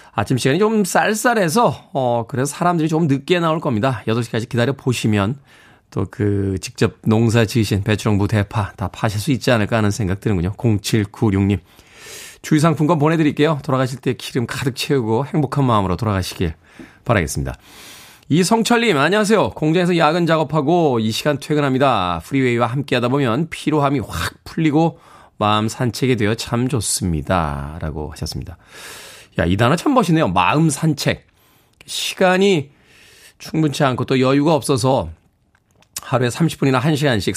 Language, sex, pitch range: Korean, male, 115-160 Hz